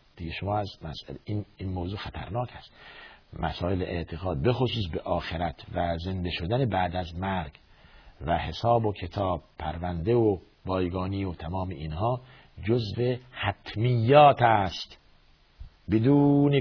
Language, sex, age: Persian, male, 50-69